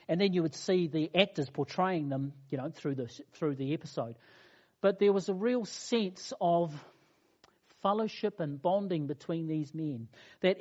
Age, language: 50-69, English